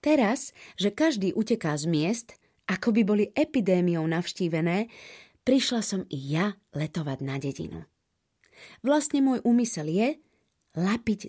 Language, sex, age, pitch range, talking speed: Slovak, female, 30-49, 170-230 Hz, 120 wpm